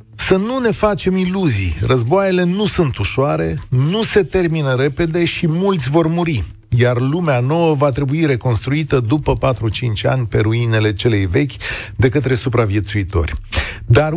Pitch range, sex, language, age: 110-160 Hz, male, Romanian, 40-59